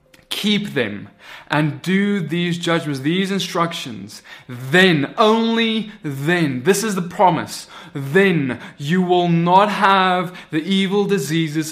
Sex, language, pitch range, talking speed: male, English, 160-220 Hz, 120 wpm